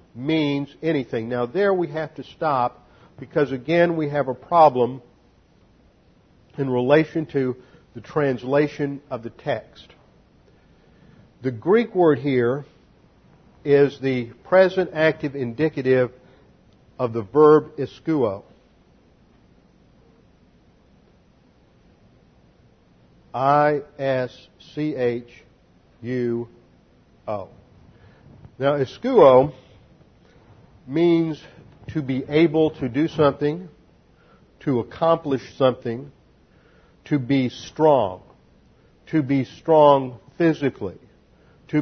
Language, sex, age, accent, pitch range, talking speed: English, male, 50-69, American, 125-155 Hz, 80 wpm